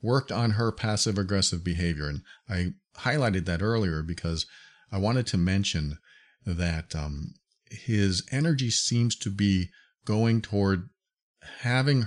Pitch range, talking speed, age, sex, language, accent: 90-120 Hz, 130 wpm, 40-59, male, English, American